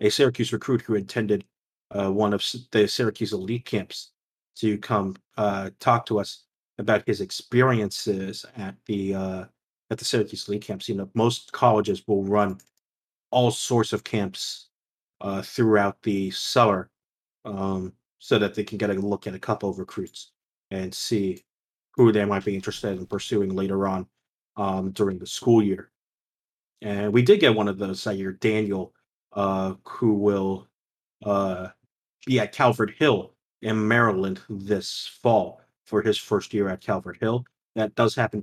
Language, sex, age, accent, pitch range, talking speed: English, male, 30-49, American, 95-110 Hz, 160 wpm